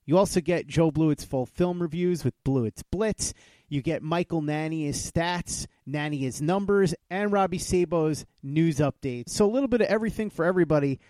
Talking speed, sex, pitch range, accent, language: 170 wpm, male, 140-175 Hz, American, English